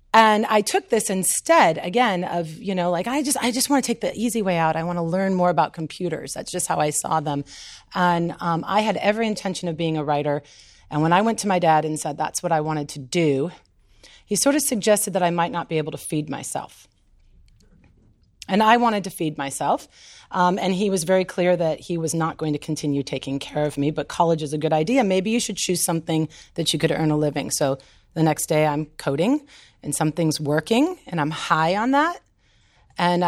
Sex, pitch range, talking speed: female, 155-210 Hz, 230 wpm